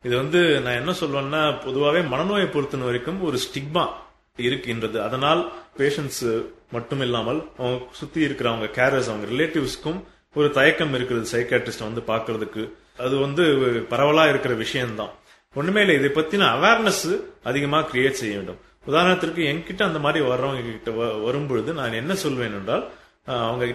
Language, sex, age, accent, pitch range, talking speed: English, male, 30-49, Indian, 125-160 Hz, 115 wpm